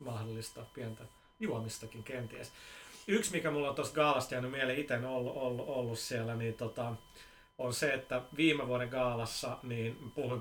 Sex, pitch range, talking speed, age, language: male, 115-135 Hz, 155 wpm, 30-49, Finnish